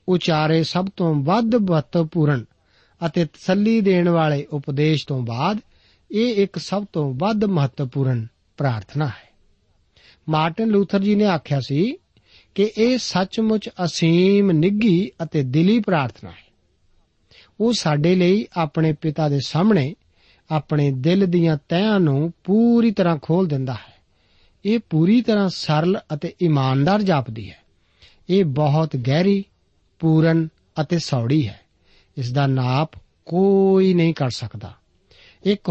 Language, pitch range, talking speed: Punjabi, 130-185 Hz, 90 wpm